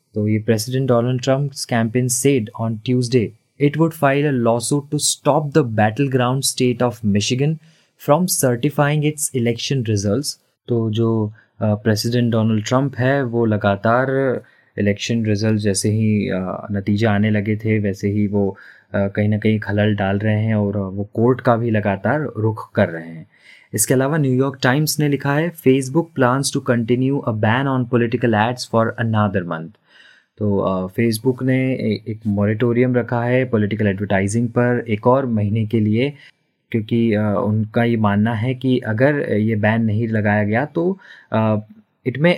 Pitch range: 110-130 Hz